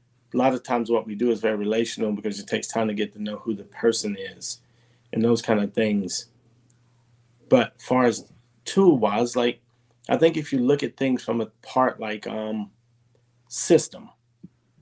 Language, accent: English, American